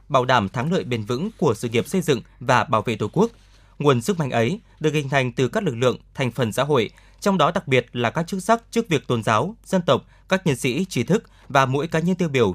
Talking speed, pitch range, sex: 270 wpm, 120-170 Hz, male